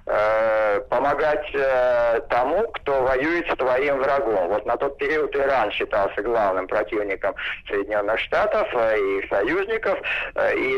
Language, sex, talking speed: Russian, male, 110 wpm